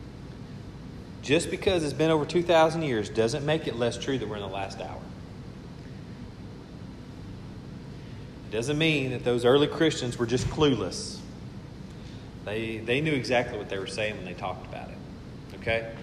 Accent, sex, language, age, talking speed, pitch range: American, male, English, 40-59, 155 wpm, 115-150 Hz